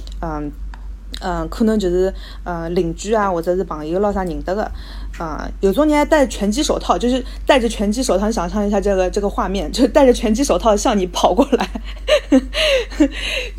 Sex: female